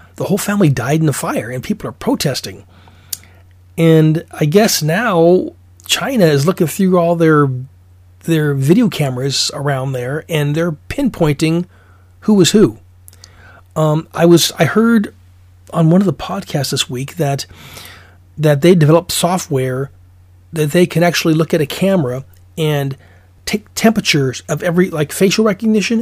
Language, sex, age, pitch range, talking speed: English, male, 40-59, 125-185 Hz, 150 wpm